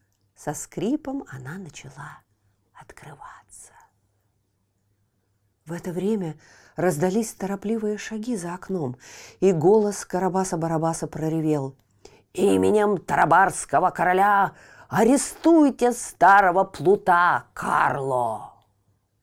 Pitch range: 135-210 Hz